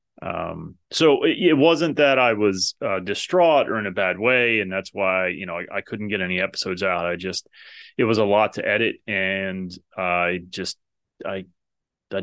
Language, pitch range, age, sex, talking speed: English, 95-135 Hz, 30-49, male, 195 wpm